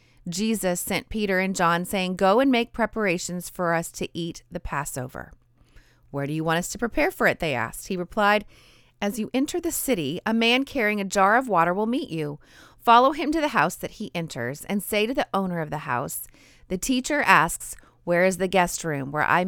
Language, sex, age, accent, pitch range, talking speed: English, female, 30-49, American, 155-215 Hz, 215 wpm